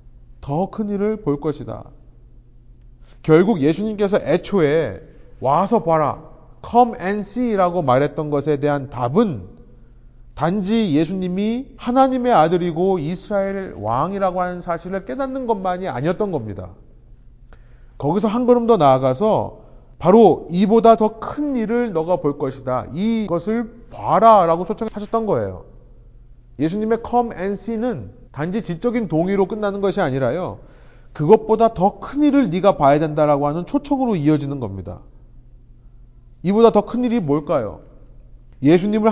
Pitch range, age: 120-200 Hz, 30-49